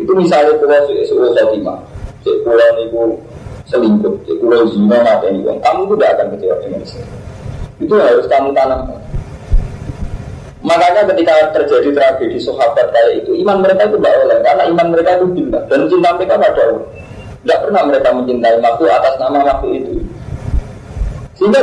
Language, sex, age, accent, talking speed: Indonesian, male, 30-49, Indian, 155 wpm